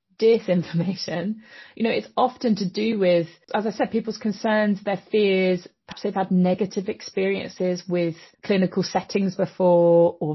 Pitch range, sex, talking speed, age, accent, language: 170-210 Hz, female, 145 wpm, 30-49, British, English